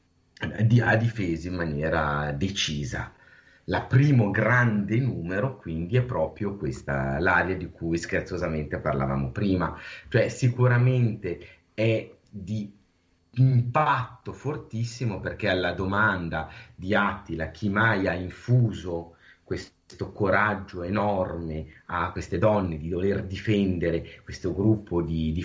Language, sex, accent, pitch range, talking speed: Italian, male, native, 85-115 Hz, 115 wpm